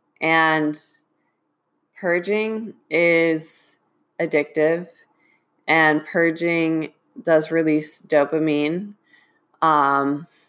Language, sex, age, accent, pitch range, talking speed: English, female, 20-39, American, 150-180 Hz, 55 wpm